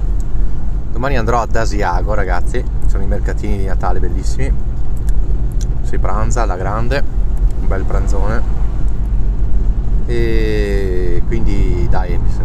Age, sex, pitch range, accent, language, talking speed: 30-49, male, 90-110 Hz, native, Italian, 100 wpm